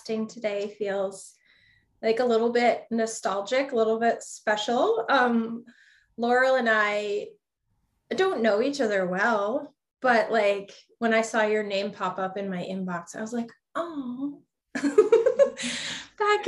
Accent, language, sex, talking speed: American, English, female, 135 wpm